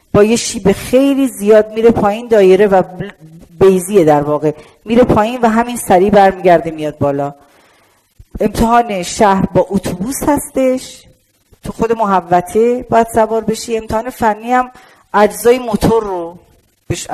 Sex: female